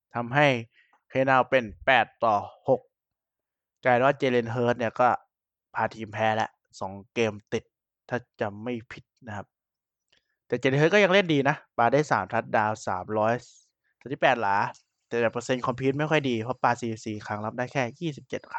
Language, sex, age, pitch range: Thai, male, 20-39, 110-150 Hz